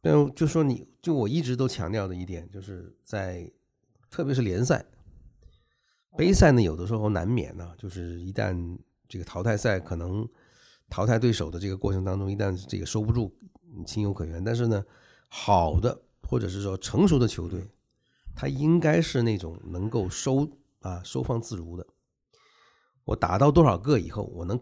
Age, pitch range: 50-69, 90-120 Hz